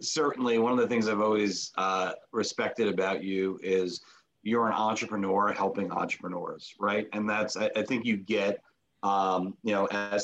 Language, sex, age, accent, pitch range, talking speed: English, male, 40-59, American, 95-110 Hz, 170 wpm